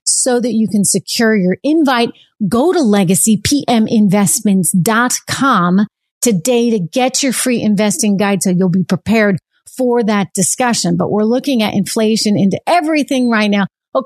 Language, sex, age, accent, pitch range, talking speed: English, female, 40-59, American, 190-235 Hz, 145 wpm